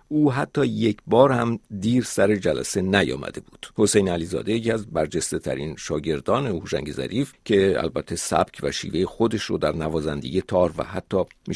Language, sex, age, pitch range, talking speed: Persian, male, 50-69, 90-120 Hz, 165 wpm